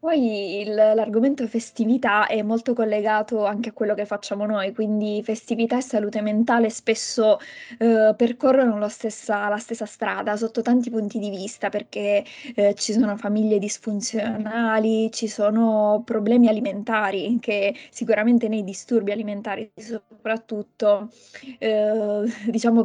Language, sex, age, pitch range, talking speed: Italian, female, 20-39, 210-230 Hz, 125 wpm